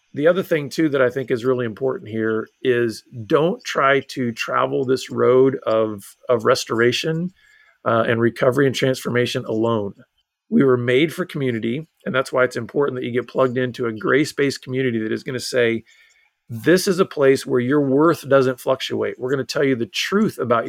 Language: English